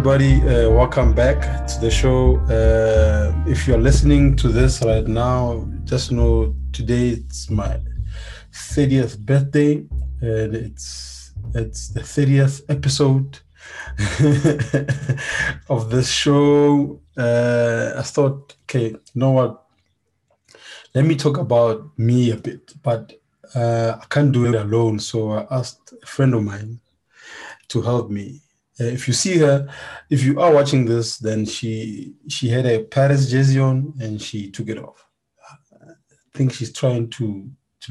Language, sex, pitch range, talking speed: English, male, 110-135 Hz, 140 wpm